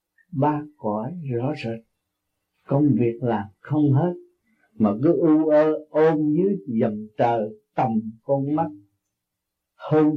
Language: Vietnamese